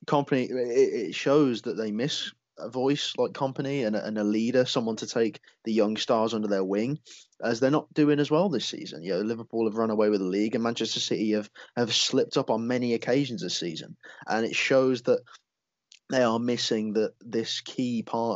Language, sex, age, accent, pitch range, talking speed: English, male, 20-39, British, 110-140 Hz, 205 wpm